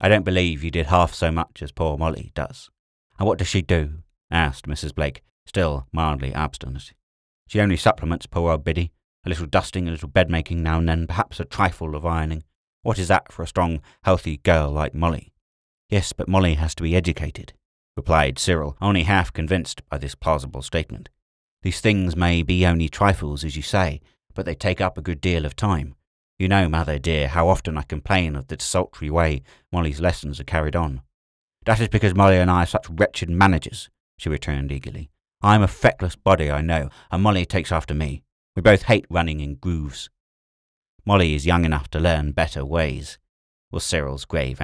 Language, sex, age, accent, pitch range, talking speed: English, male, 30-49, British, 75-90 Hz, 195 wpm